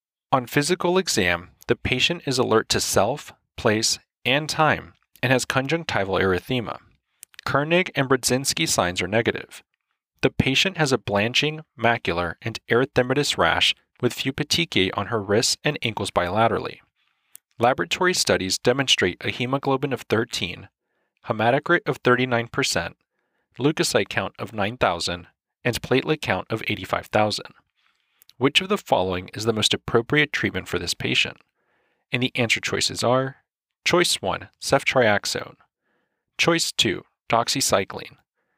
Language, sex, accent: English, male, American